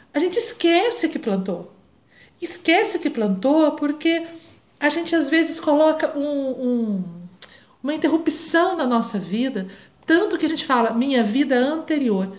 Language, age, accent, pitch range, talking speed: Portuguese, 50-69, Brazilian, 205-285 Hz, 140 wpm